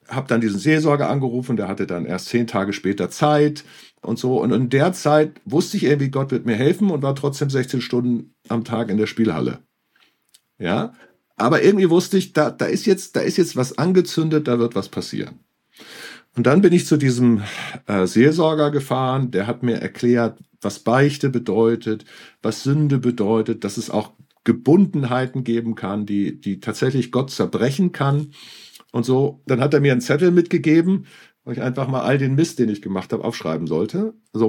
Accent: German